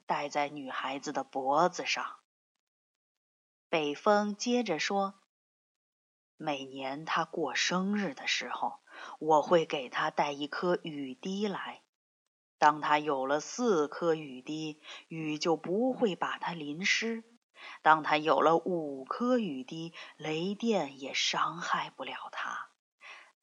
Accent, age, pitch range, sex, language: native, 30-49, 150-230 Hz, female, Chinese